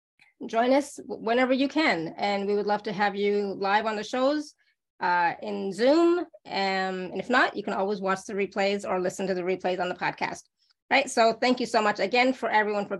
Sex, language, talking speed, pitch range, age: female, English, 215 wpm, 195-230 Hz, 20-39